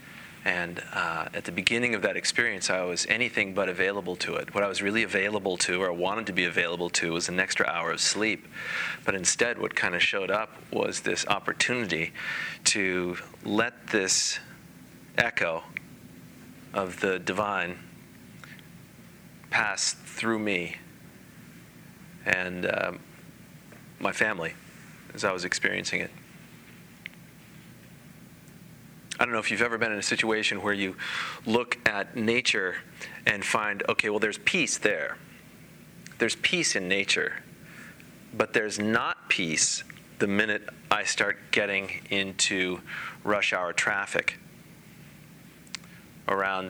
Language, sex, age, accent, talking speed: English, male, 30-49, American, 130 wpm